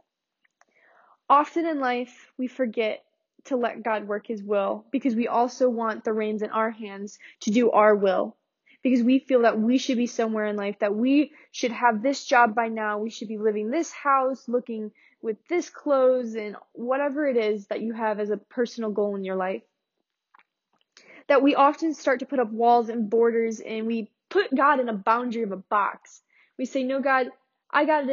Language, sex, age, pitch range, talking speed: English, female, 10-29, 220-265 Hz, 200 wpm